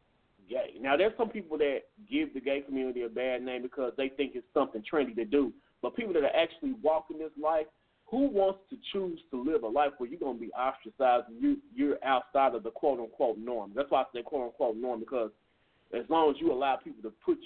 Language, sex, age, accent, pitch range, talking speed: English, male, 30-49, American, 130-205 Hz, 220 wpm